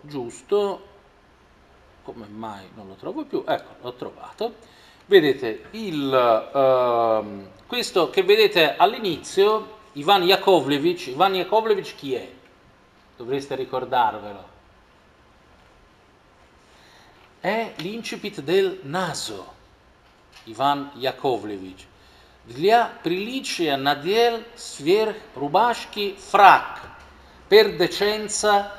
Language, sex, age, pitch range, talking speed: Italian, male, 40-59, 145-230 Hz, 80 wpm